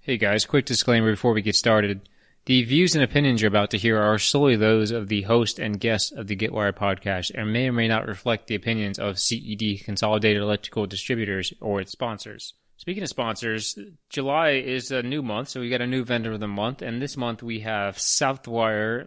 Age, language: 20-39, English